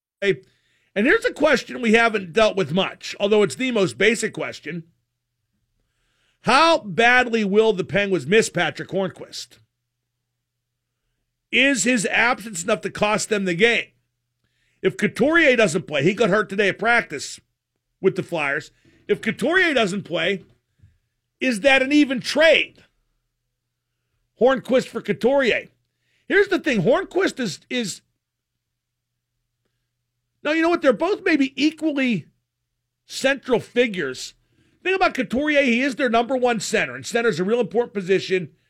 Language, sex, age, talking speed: English, male, 50-69, 140 wpm